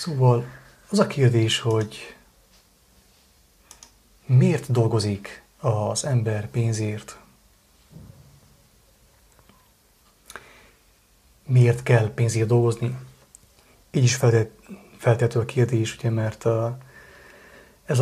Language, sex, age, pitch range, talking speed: English, male, 30-49, 115-125 Hz, 75 wpm